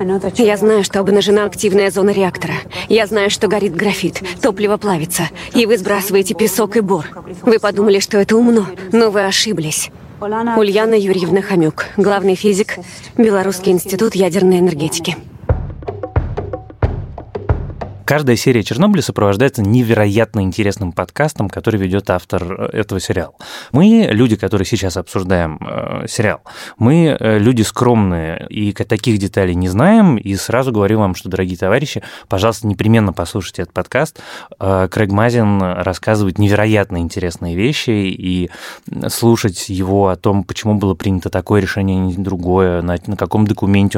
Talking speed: 135 wpm